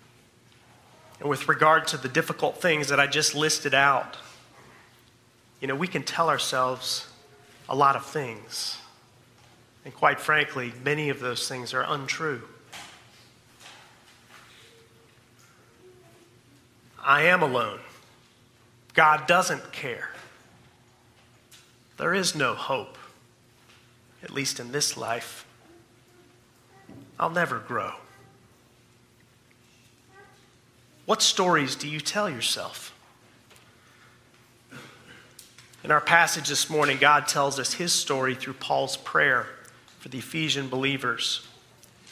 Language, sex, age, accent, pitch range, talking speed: English, male, 30-49, American, 120-155 Hz, 105 wpm